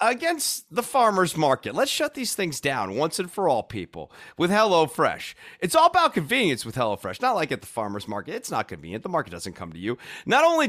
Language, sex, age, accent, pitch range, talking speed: English, male, 30-49, American, 125-175 Hz, 220 wpm